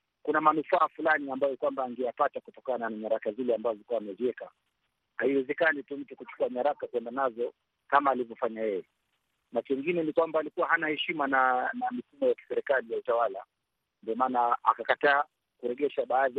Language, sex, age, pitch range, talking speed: Swahili, male, 50-69, 130-165 Hz, 140 wpm